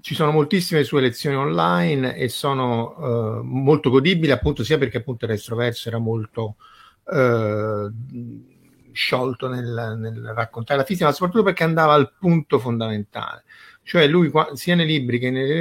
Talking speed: 160 wpm